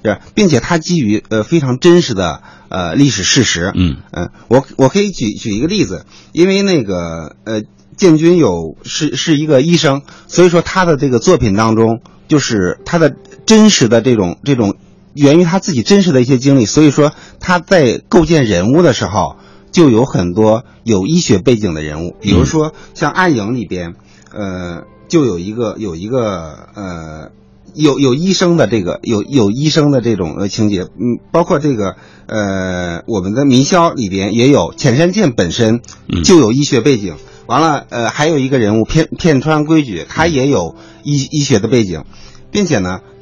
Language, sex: Chinese, male